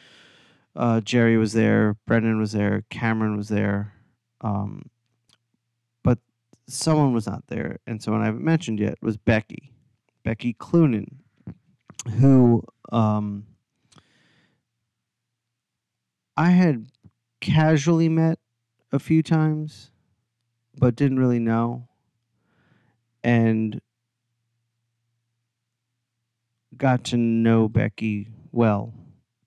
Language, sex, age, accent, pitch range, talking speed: English, male, 30-49, American, 115-125 Hz, 90 wpm